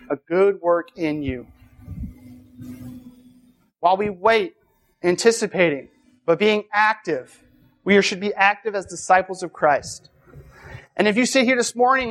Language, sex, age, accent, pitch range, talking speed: English, male, 30-49, American, 180-225 Hz, 135 wpm